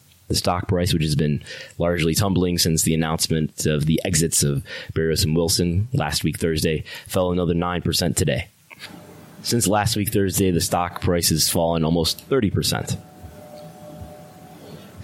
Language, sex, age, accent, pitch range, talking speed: English, male, 20-39, American, 80-95 Hz, 145 wpm